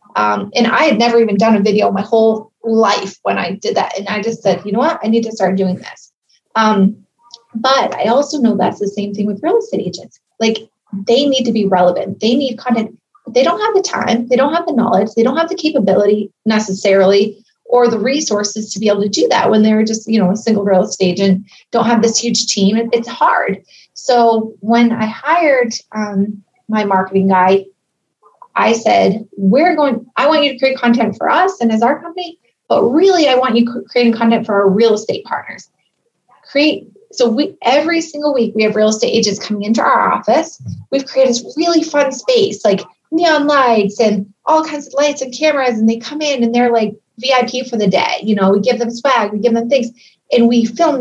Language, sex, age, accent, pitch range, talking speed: English, female, 30-49, American, 210-265 Hz, 215 wpm